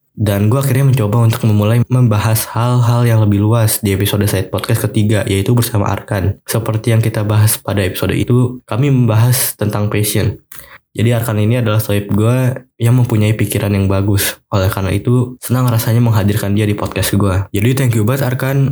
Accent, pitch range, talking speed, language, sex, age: native, 100-120 Hz, 180 wpm, Indonesian, male, 20-39